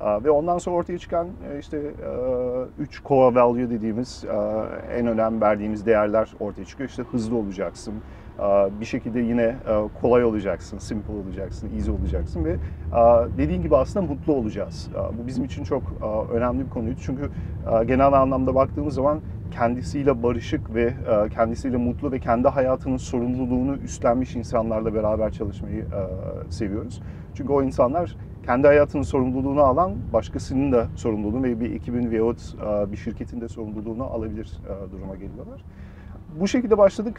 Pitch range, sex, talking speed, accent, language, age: 105-135 Hz, male, 135 wpm, native, Turkish, 40-59